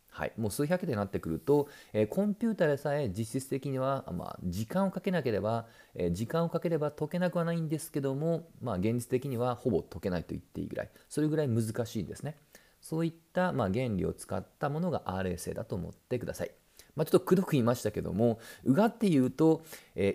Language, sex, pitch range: Japanese, male, 105-165 Hz